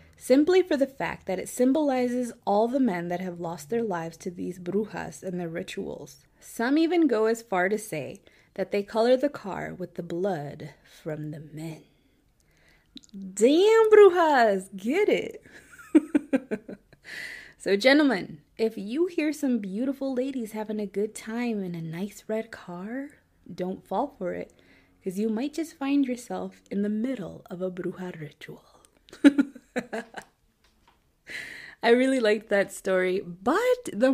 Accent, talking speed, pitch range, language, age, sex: American, 150 wpm, 185-265 Hz, English, 20-39, female